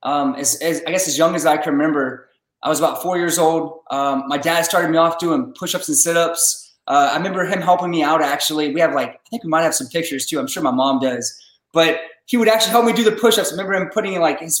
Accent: American